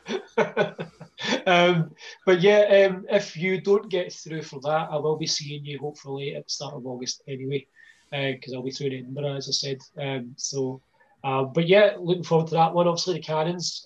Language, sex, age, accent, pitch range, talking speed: English, male, 20-39, British, 140-160 Hz, 200 wpm